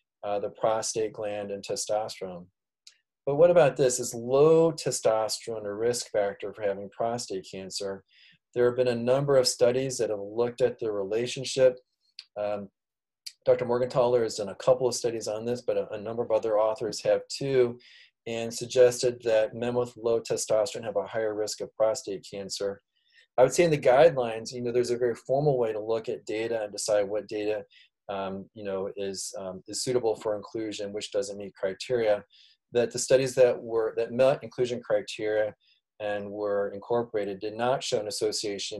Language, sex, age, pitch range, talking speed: English, male, 30-49, 105-130 Hz, 180 wpm